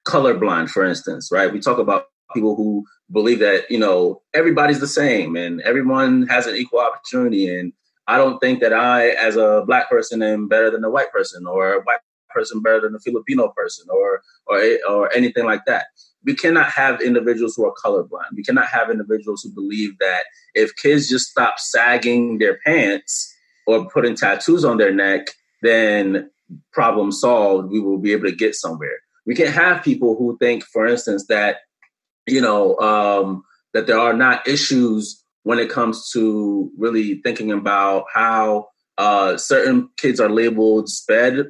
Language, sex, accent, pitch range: English, male, American, 105-150 Hz